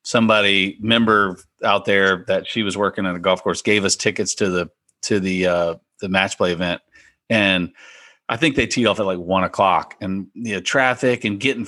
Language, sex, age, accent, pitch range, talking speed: English, male, 40-59, American, 95-120 Hz, 210 wpm